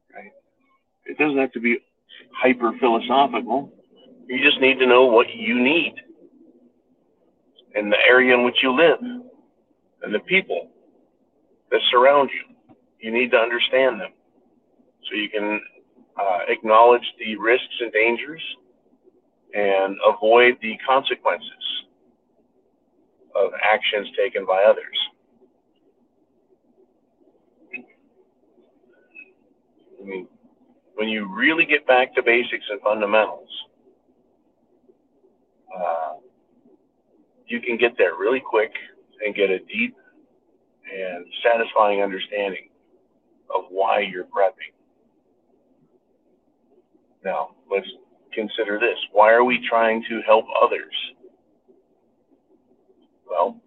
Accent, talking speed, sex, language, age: American, 100 wpm, male, English, 50-69